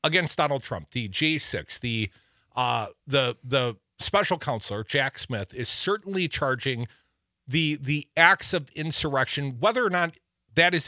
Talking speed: 145 wpm